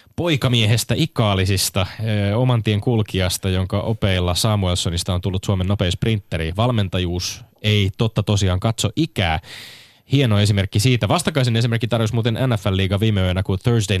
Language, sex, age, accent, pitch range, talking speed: Finnish, male, 20-39, native, 95-115 Hz, 135 wpm